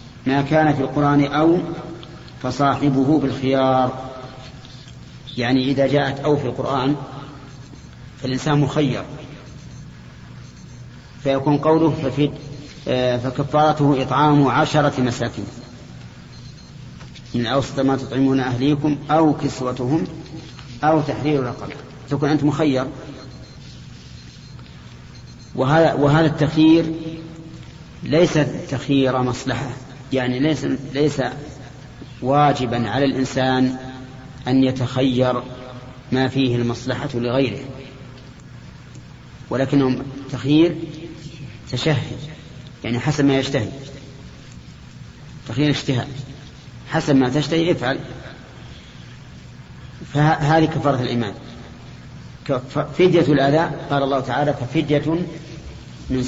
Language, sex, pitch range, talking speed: Arabic, male, 130-150 Hz, 80 wpm